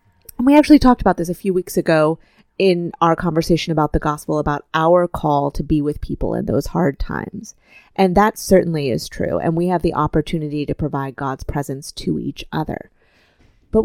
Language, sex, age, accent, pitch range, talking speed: English, female, 30-49, American, 150-185 Hz, 195 wpm